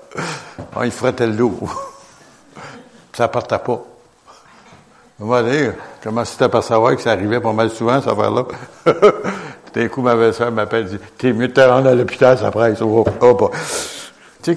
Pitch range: 115-150 Hz